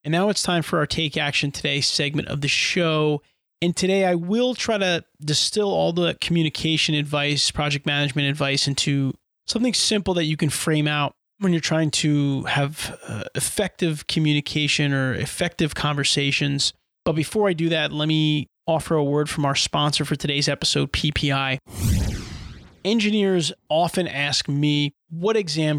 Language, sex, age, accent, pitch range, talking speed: English, male, 30-49, American, 140-160 Hz, 160 wpm